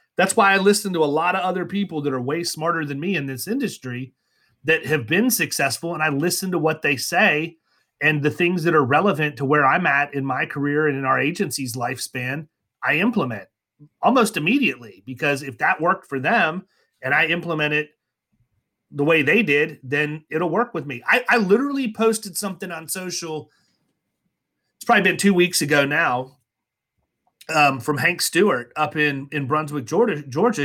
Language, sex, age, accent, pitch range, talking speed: English, male, 30-49, American, 130-165 Hz, 185 wpm